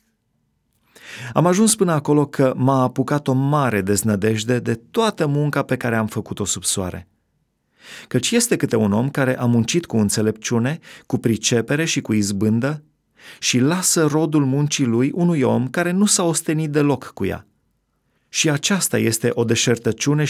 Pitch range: 110-145 Hz